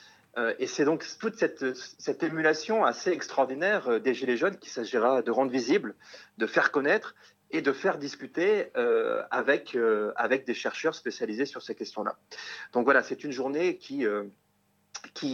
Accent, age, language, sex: French, 40-59, French, male